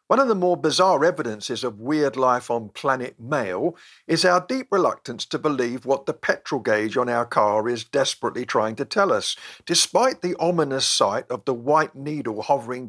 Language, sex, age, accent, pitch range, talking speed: English, male, 50-69, British, 130-180 Hz, 185 wpm